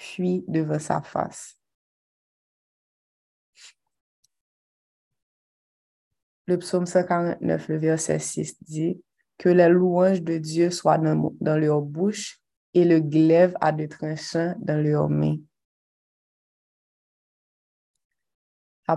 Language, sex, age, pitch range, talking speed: French, female, 20-39, 150-170 Hz, 100 wpm